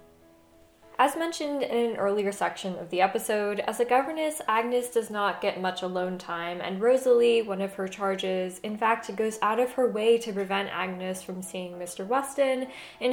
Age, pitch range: 10-29, 180-230 Hz